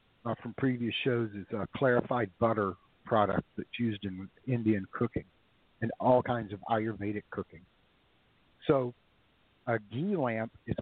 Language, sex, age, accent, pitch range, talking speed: English, male, 50-69, American, 105-130 Hz, 145 wpm